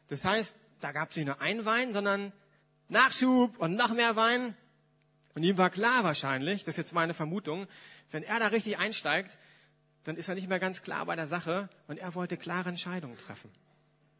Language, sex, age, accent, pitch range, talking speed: German, male, 40-59, German, 155-205 Hz, 195 wpm